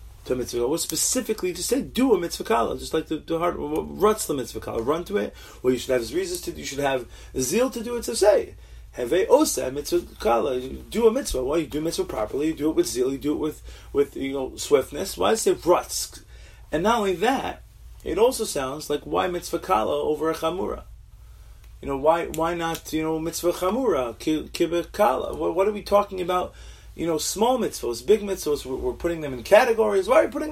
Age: 30-49